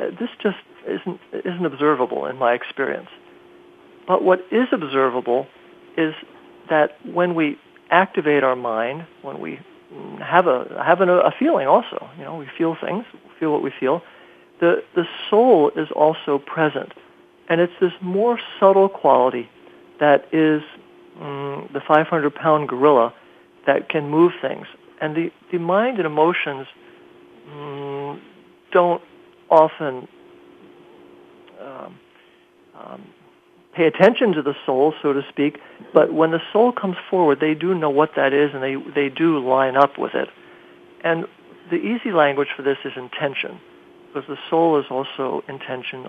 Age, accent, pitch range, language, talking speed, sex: 50-69, American, 145-190 Hz, English, 150 wpm, male